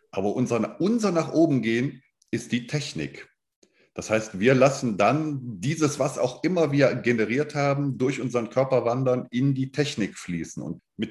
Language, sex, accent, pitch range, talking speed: German, male, German, 110-135 Hz, 155 wpm